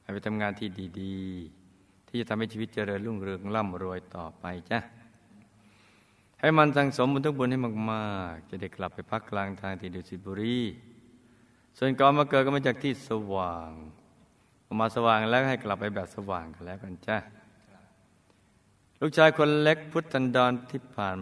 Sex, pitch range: male, 100-125 Hz